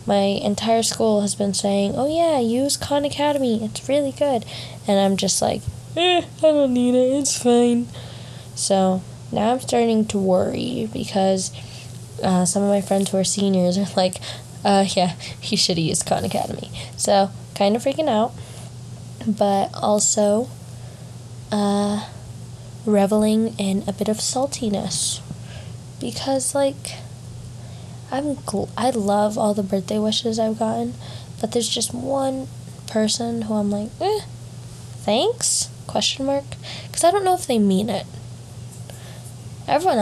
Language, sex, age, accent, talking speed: English, female, 10-29, American, 145 wpm